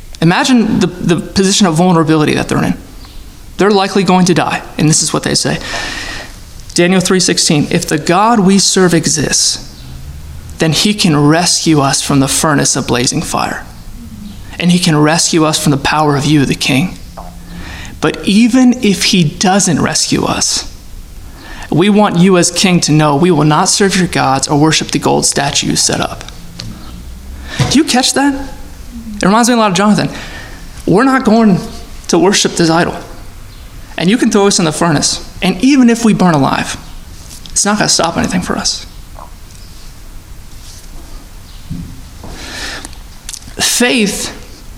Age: 20-39